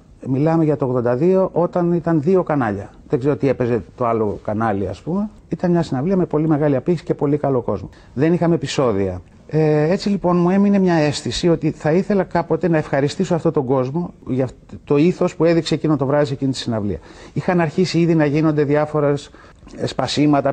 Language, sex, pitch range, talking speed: Greek, male, 115-160 Hz, 190 wpm